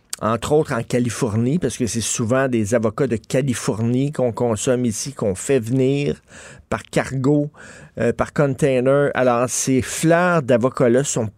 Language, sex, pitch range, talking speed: French, male, 120-155 Hz, 150 wpm